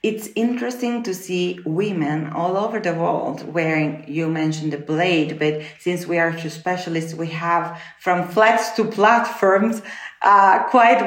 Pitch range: 160-215 Hz